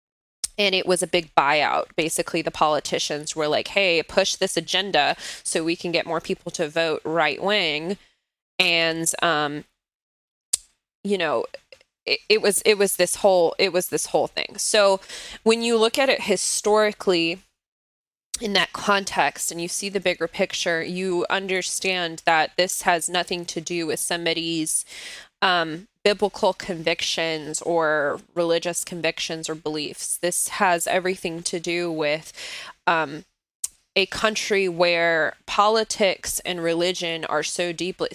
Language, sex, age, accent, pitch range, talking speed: English, female, 20-39, American, 165-190 Hz, 145 wpm